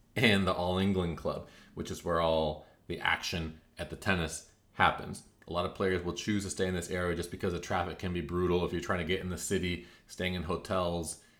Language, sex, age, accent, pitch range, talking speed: English, male, 30-49, American, 85-100 Hz, 230 wpm